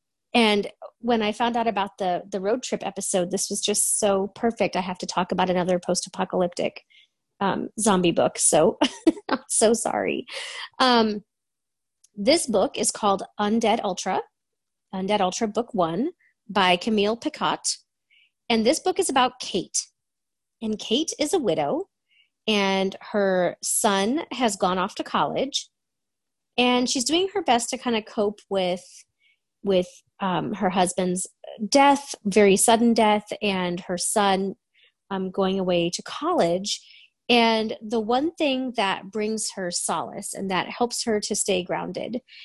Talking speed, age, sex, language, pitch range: 150 wpm, 30-49, female, English, 195-255 Hz